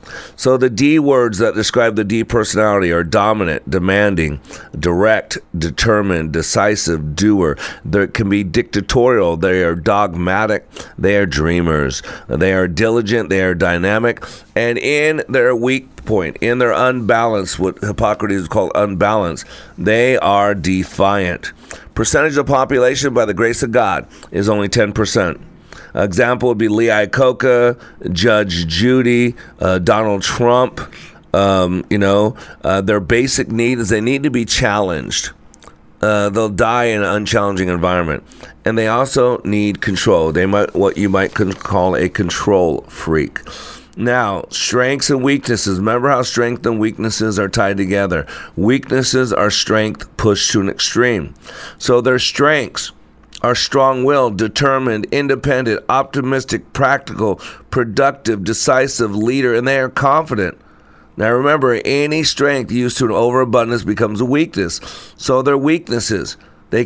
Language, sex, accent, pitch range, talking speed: English, male, American, 100-125 Hz, 135 wpm